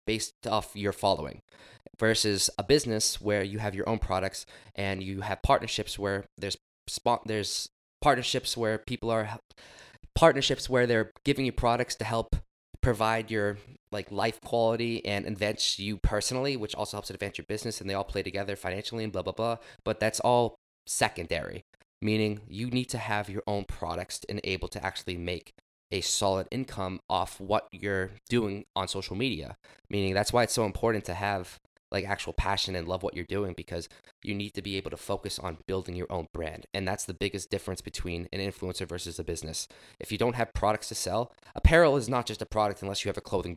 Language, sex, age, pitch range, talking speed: English, male, 20-39, 95-115 Hz, 195 wpm